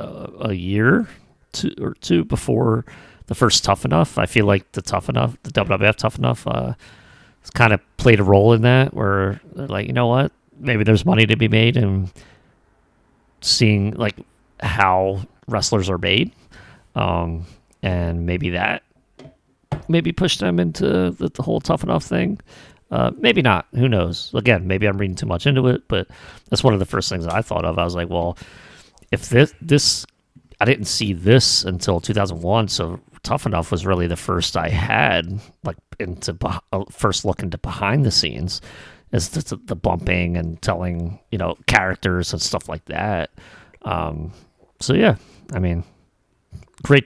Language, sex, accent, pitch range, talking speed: English, male, American, 85-110 Hz, 175 wpm